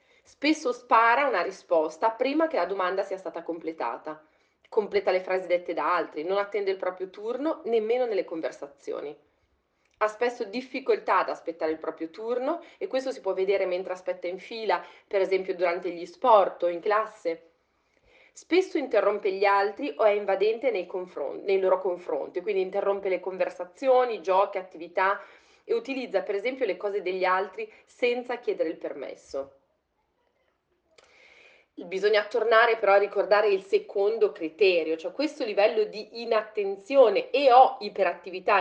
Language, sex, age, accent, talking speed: Italian, female, 30-49, native, 150 wpm